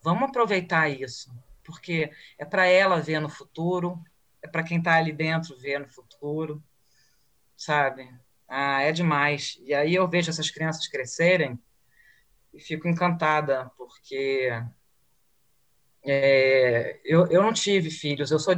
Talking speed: 130 wpm